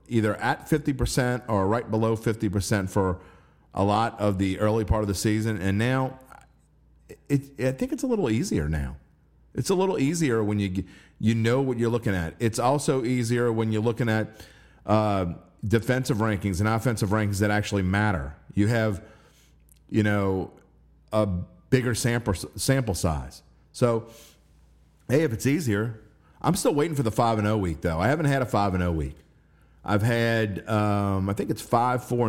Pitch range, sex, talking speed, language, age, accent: 85-125 Hz, male, 170 wpm, English, 40-59, American